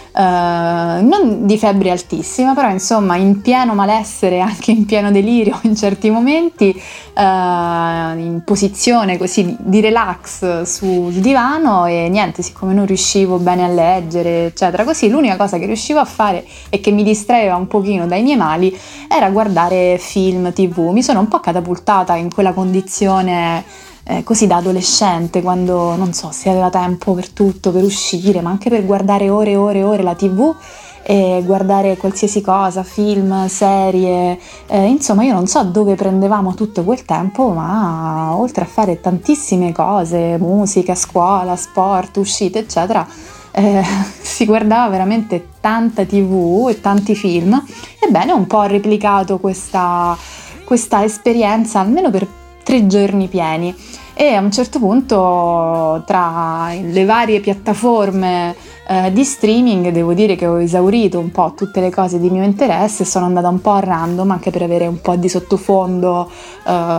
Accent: native